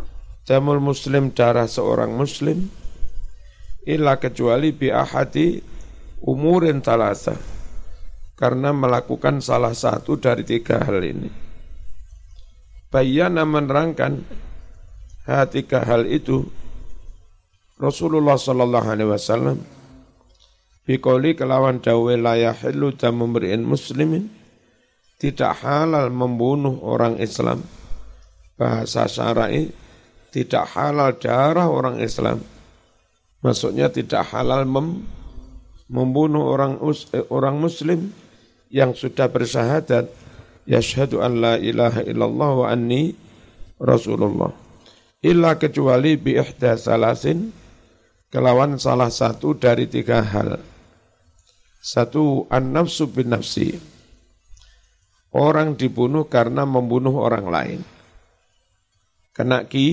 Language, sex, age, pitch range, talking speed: Indonesian, male, 50-69, 95-140 Hz, 85 wpm